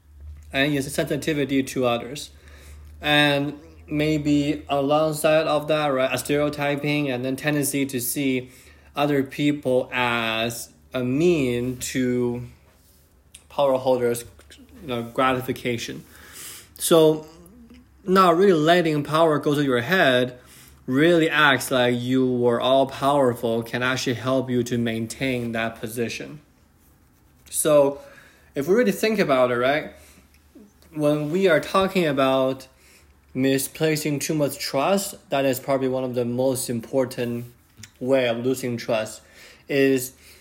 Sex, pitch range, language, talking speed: male, 120-145 Hz, English, 125 wpm